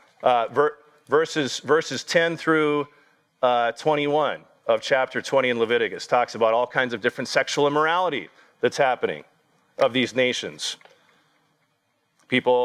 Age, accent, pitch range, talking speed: 40-59, American, 125-165 Hz, 120 wpm